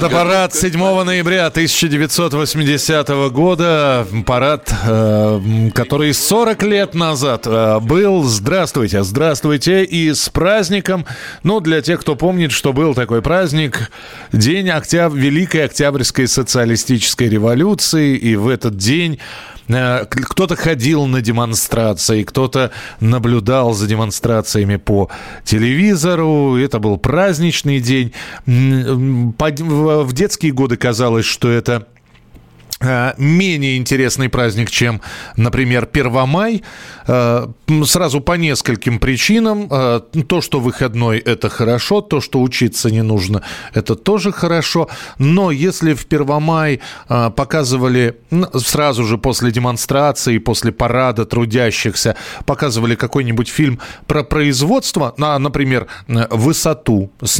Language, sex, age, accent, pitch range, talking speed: Russian, male, 20-39, native, 120-160 Hz, 100 wpm